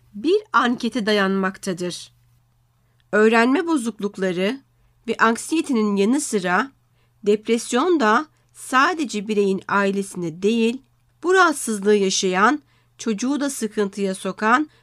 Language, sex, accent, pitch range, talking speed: Turkish, female, native, 190-245 Hz, 85 wpm